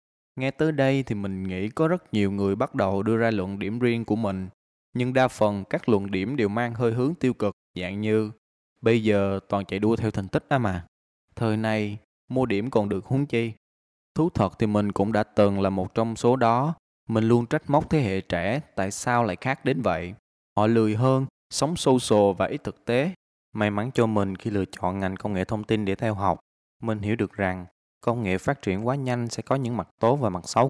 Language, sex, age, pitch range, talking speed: Vietnamese, male, 20-39, 95-120 Hz, 235 wpm